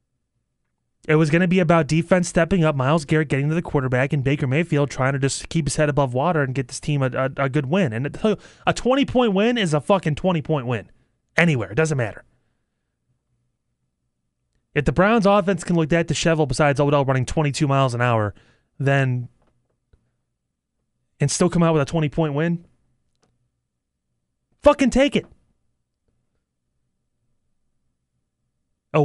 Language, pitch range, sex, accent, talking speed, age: English, 120-160 Hz, male, American, 155 wpm, 30-49